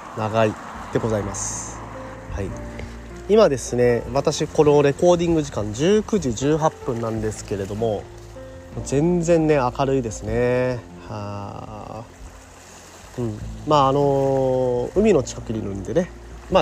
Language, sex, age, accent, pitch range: Japanese, male, 30-49, native, 95-140 Hz